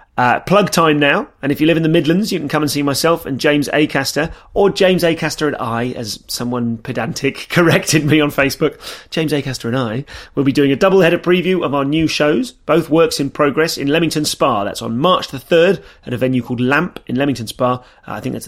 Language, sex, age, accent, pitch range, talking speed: English, male, 30-49, British, 115-150 Hz, 235 wpm